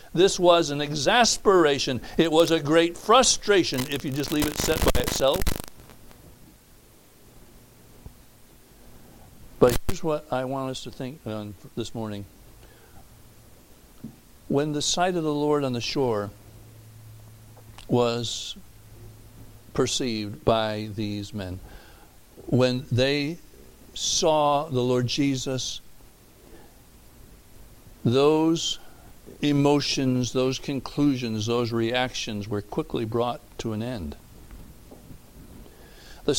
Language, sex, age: English, male, 60-79